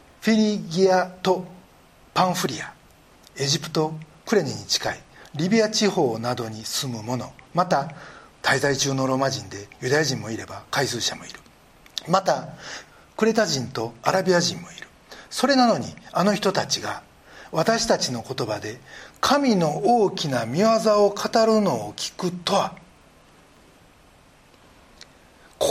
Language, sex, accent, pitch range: Japanese, male, native, 150-235 Hz